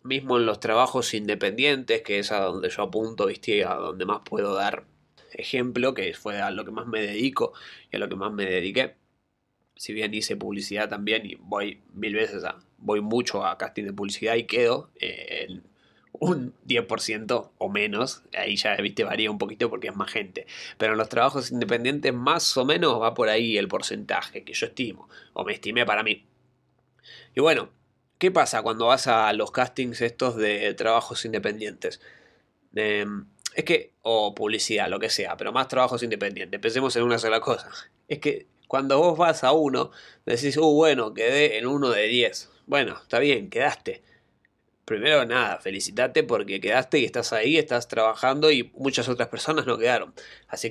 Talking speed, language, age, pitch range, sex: 180 wpm, Spanish, 20-39, 110-150 Hz, male